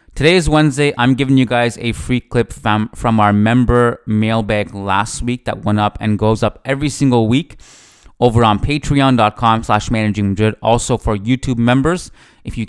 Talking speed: 180 wpm